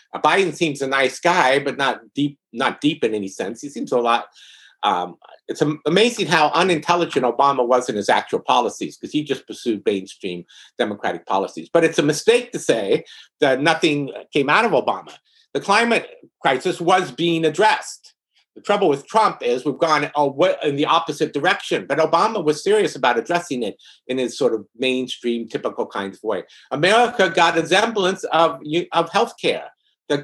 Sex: male